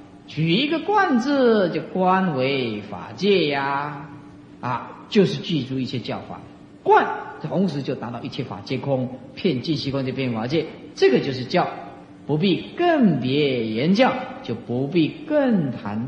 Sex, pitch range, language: male, 125-205 Hz, Chinese